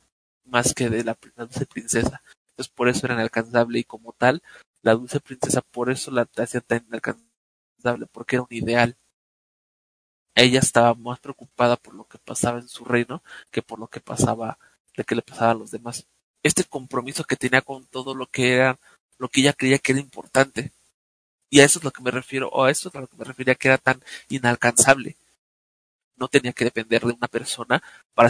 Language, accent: Spanish, Mexican